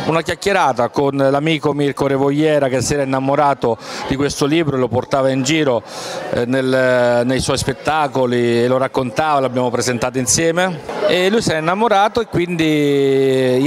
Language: Italian